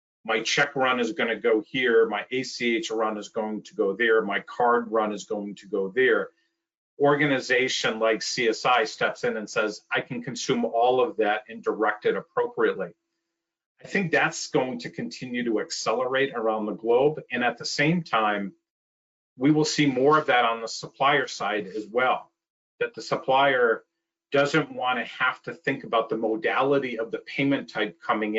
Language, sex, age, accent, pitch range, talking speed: English, male, 40-59, American, 110-175 Hz, 180 wpm